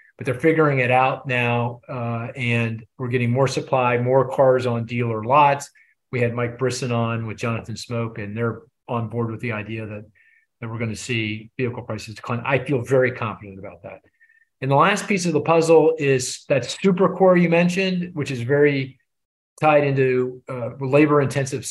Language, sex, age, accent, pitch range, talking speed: English, male, 40-59, American, 115-145 Hz, 185 wpm